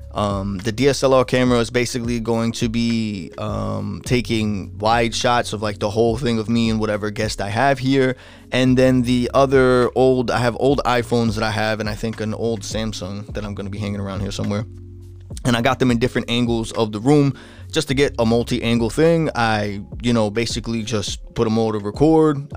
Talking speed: 210 wpm